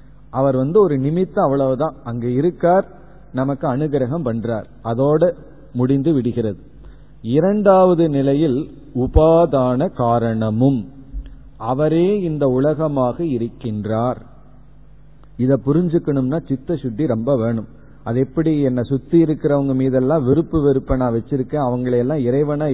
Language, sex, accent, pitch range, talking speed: Tamil, male, native, 125-155 Hz, 105 wpm